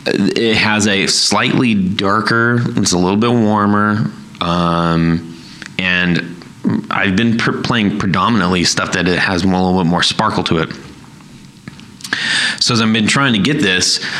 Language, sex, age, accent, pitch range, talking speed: English, male, 30-49, American, 90-105 Hz, 150 wpm